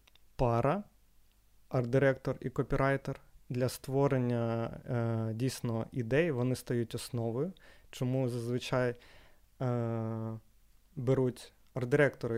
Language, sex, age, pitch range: Ukrainian, male, 20-39, 115-135 Hz